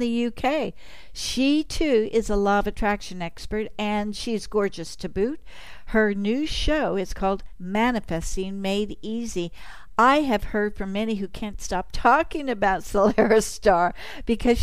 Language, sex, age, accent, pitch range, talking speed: English, female, 60-79, American, 195-245 Hz, 150 wpm